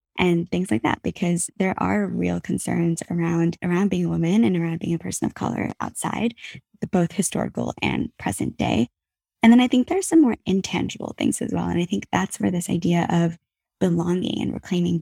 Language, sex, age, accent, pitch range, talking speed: English, female, 20-39, American, 170-195 Hz, 195 wpm